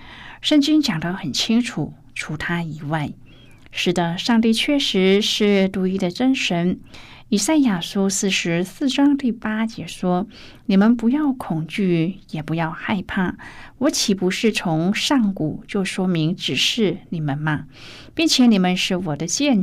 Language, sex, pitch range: Chinese, female, 165-215 Hz